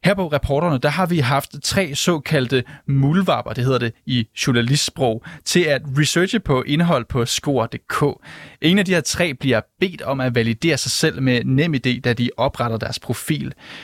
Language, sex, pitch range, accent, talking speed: Danish, male, 125-165 Hz, native, 180 wpm